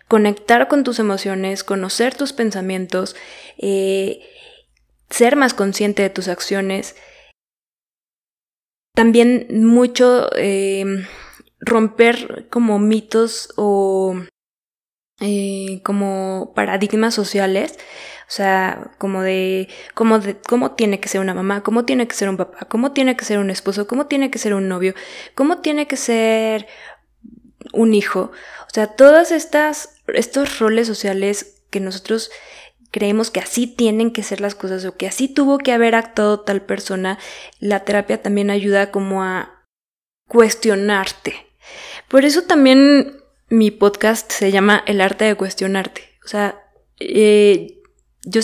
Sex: female